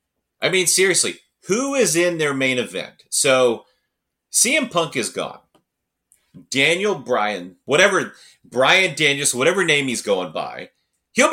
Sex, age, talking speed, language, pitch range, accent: male, 30-49, 130 wpm, English, 130-200 Hz, American